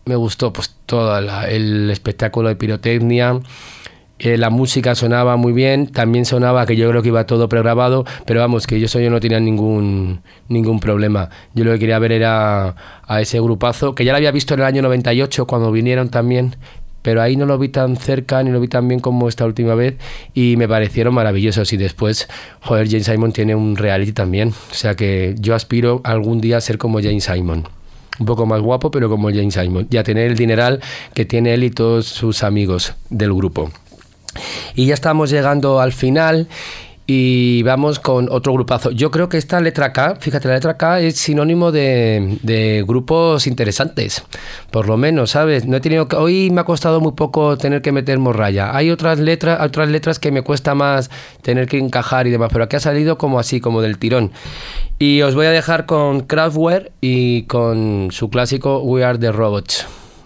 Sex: male